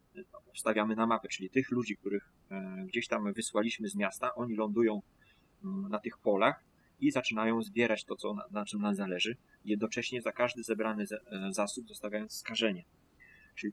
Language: Polish